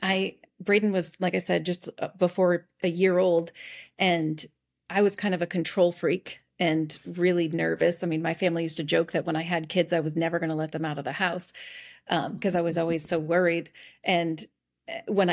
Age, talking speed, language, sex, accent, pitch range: 30-49, 210 wpm, English, female, American, 165-195 Hz